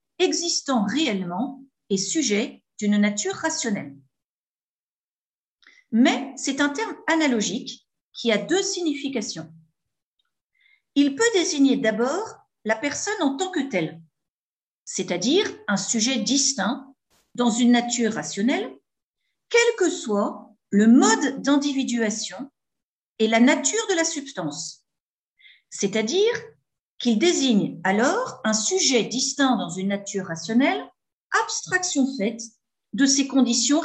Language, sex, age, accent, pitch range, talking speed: English, female, 50-69, French, 215-310 Hz, 110 wpm